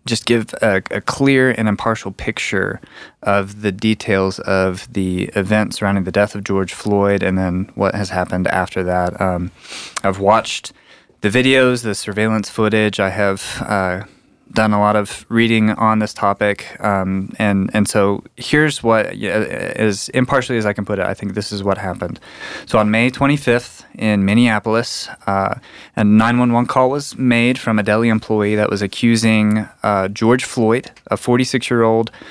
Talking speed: 165 wpm